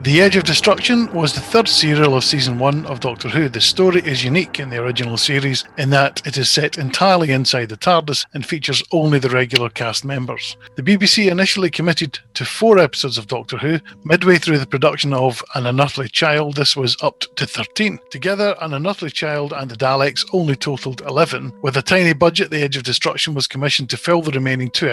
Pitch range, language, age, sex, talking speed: 130-160 Hz, English, 50-69, male, 205 wpm